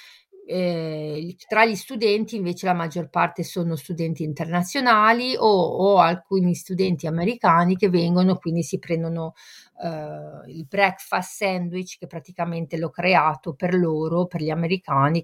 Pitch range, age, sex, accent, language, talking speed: 155-190 Hz, 50-69, female, native, Italian, 135 wpm